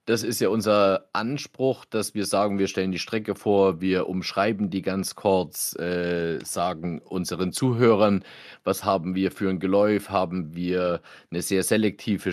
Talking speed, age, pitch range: 160 wpm, 40-59, 95-115 Hz